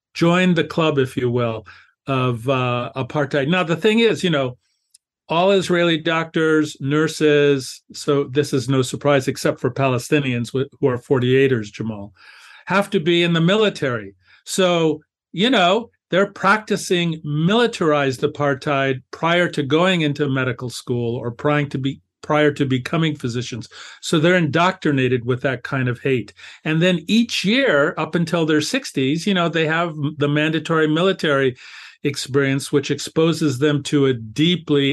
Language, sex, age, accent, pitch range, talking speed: English, male, 50-69, American, 135-165 Hz, 150 wpm